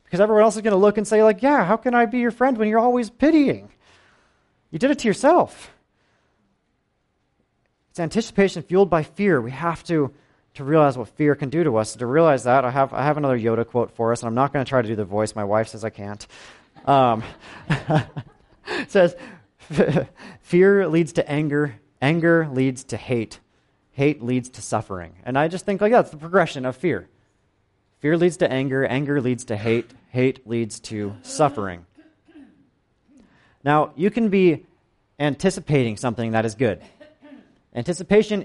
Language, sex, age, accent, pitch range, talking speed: English, male, 30-49, American, 120-175 Hz, 185 wpm